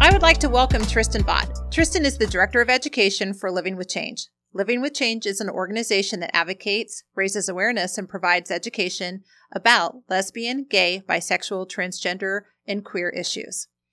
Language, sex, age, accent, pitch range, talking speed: English, female, 40-59, American, 190-225 Hz, 165 wpm